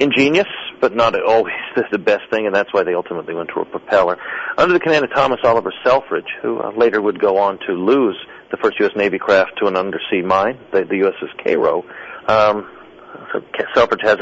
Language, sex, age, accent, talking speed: English, male, 50-69, American, 200 wpm